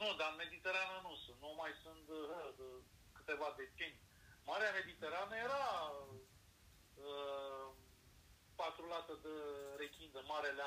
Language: Romanian